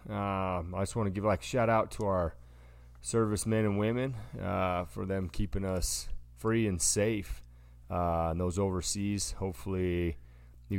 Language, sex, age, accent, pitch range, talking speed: English, male, 30-49, American, 80-95 Hz, 155 wpm